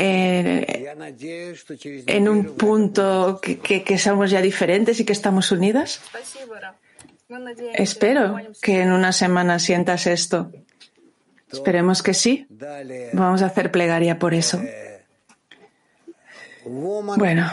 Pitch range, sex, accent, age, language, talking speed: 180-225 Hz, female, Spanish, 30-49, Spanish, 110 wpm